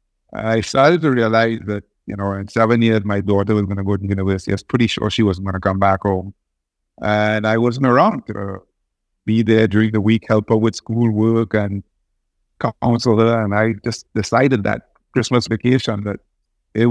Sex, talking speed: male, 195 wpm